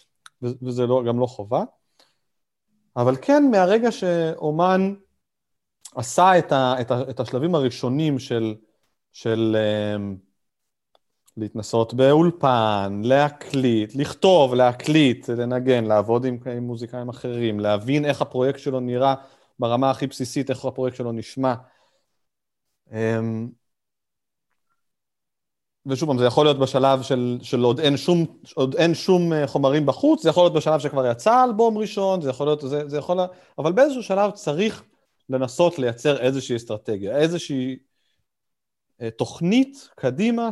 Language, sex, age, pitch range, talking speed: Hebrew, male, 30-49, 120-165 Hz, 125 wpm